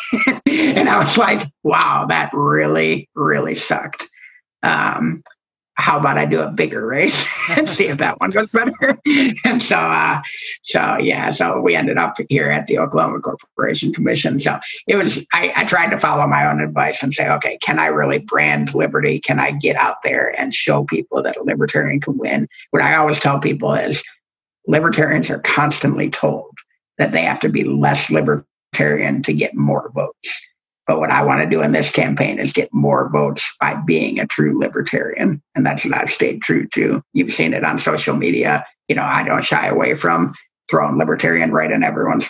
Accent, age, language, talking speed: American, 50-69, English, 190 wpm